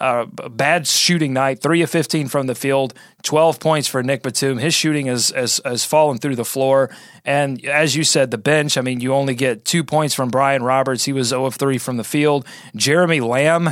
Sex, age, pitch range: male, 30-49, 130-170 Hz